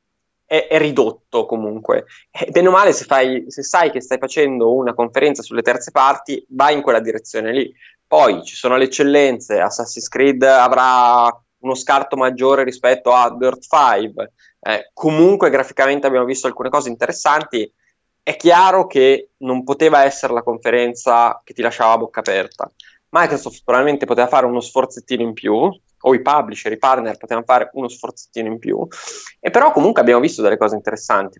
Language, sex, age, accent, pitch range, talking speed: Italian, male, 20-39, native, 120-145 Hz, 160 wpm